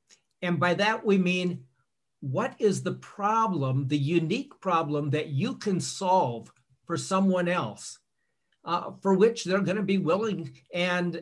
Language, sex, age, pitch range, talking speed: English, male, 60-79, 155-195 Hz, 145 wpm